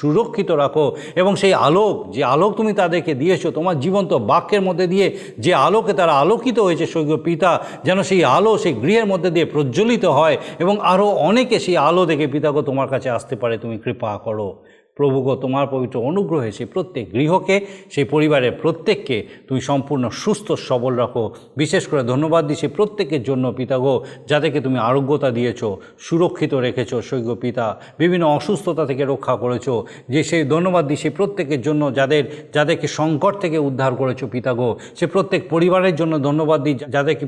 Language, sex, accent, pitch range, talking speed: Bengali, male, native, 140-180 Hz, 165 wpm